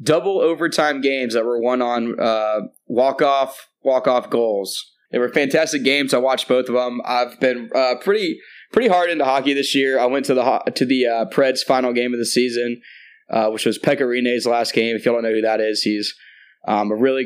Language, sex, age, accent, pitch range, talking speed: English, male, 20-39, American, 115-150 Hz, 210 wpm